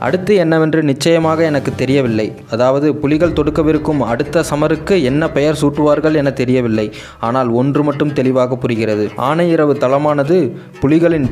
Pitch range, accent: 135-160 Hz, native